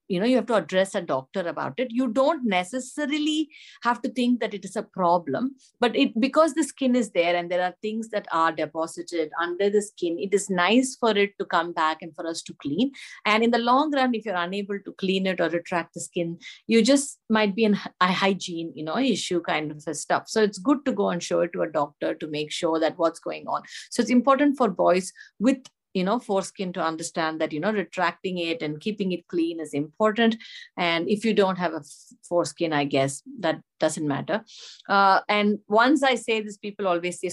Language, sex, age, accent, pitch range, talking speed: English, female, 50-69, Indian, 170-225 Hz, 225 wpm